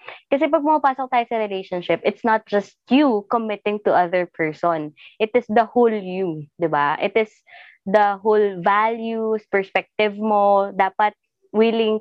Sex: female